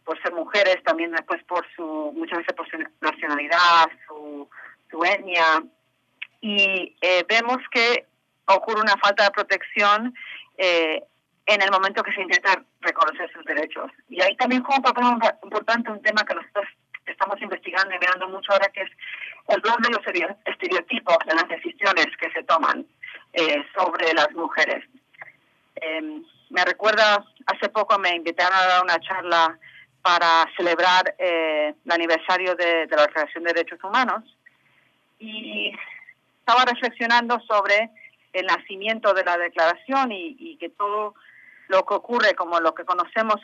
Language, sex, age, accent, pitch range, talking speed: English, female, 30-49, Spanish, 165-230 Hz, 155 wpm